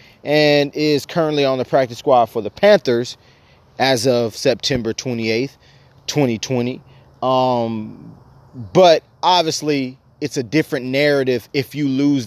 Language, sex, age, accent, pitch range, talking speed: English, male, 30-49, American, 125-150 Hz, 120 wpm